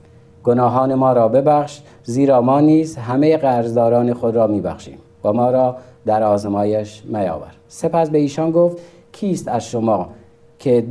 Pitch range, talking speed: 115-145 Hz, 145 wpm